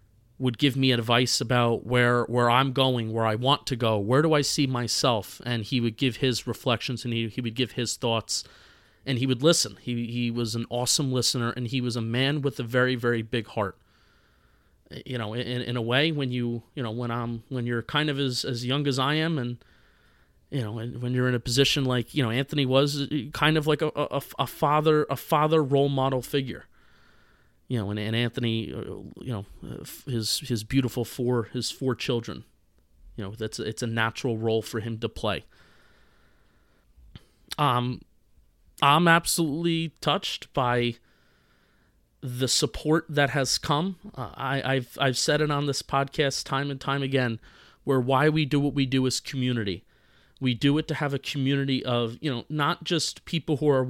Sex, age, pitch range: male, 30-49, 115-140 Hz